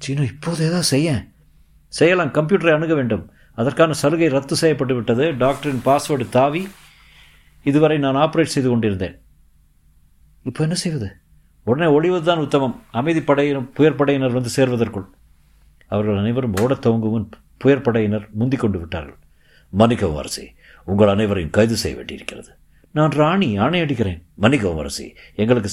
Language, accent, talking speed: Tamil, native, 80 wpm